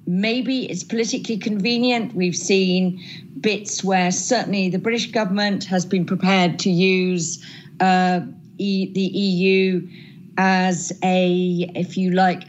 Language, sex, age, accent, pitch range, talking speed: English, female, 40-59, British, 175-205 Hz, 120 wpm